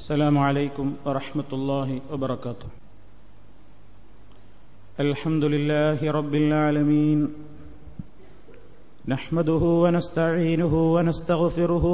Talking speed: 60 wpm